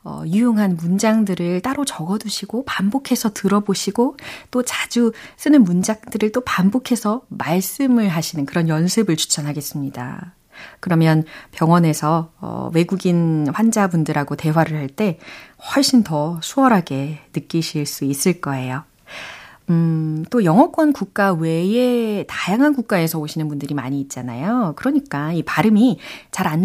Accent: native